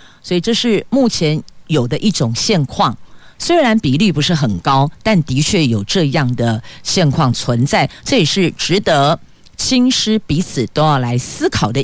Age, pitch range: 50-69, 130-200 Hz